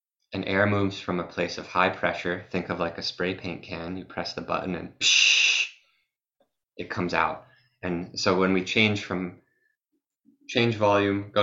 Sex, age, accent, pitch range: male, 20-39, American, 90-105 Hz